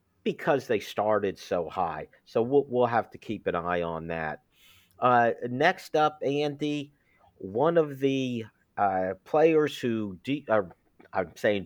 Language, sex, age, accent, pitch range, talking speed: English, male, 50-69, American, 105-130 Hz, 150 wpm